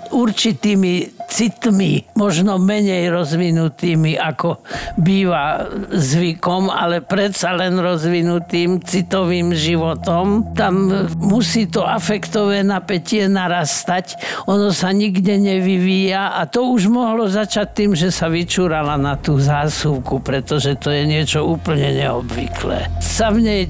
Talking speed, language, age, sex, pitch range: 115 wpm, Slovak, 60-79, male, 160-210 Hz